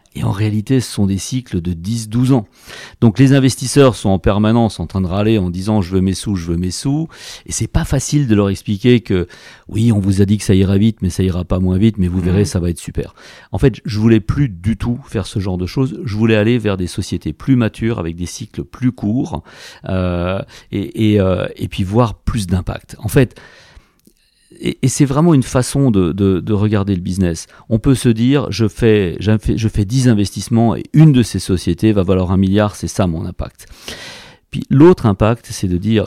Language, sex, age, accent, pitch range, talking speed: French, male, 40-59, French, 95-120 Hz, 230 wpm